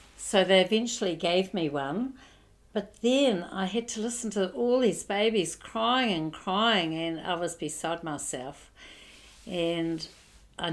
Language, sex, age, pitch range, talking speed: English, female, 60-79, 165-235 Hz, 145 wpm